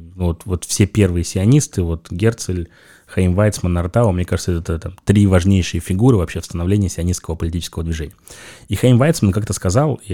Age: 20-39